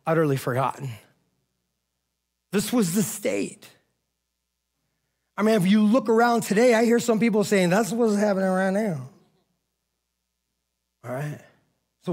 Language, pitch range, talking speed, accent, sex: English, 115-170 Hz, 130 wpm, American, male